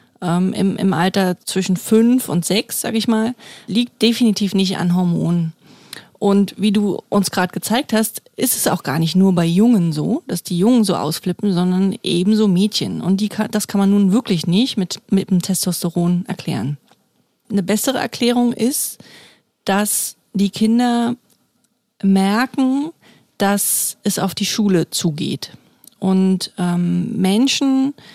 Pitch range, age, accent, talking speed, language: 185-230 Hz, 30-49, German, 150 wpm, German